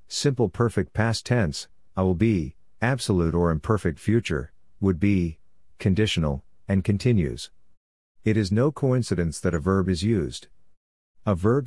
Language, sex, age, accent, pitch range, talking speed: English, male, 50-69, American, 85-105 Hz, 140 wpm